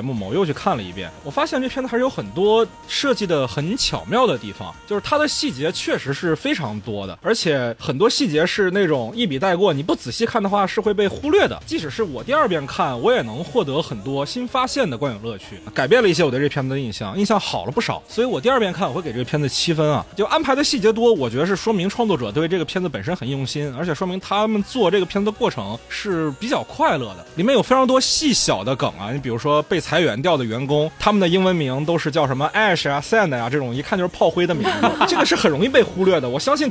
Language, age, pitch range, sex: Chinese, 20-39, 140-225 Hz, male